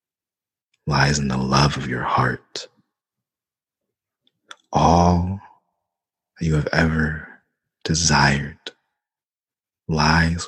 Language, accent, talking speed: English, American, 80 wpm